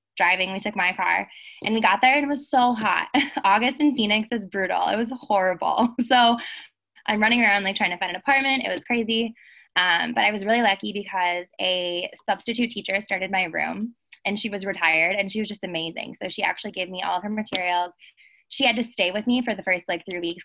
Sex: female